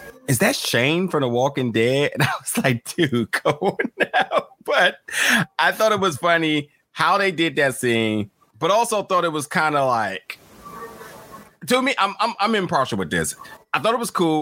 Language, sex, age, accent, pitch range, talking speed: English, male, 30-49, American, 120-175 Hz, 195 wpm